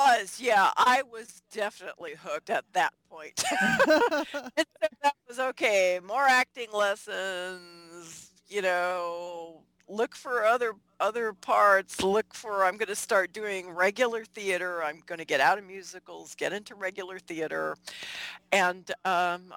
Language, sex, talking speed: English, female, 140 wpm